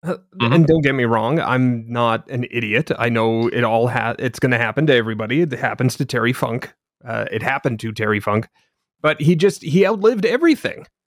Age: 30-49